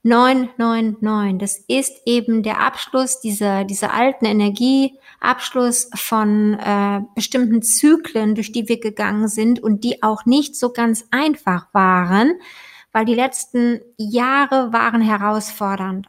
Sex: female